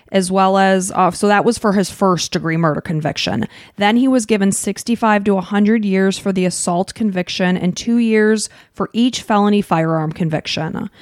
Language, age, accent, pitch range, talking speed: English, 20-39, American, 185-225 Hz, 180 wpm